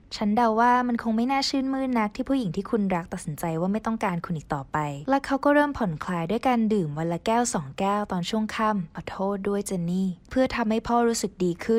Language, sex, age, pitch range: Thai, female, 20-39, 175-235 Hz